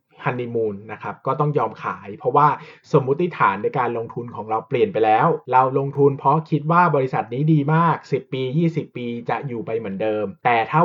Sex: male